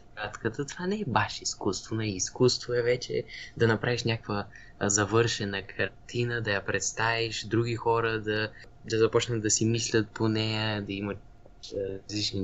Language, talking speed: Bulgarian, 150 wpm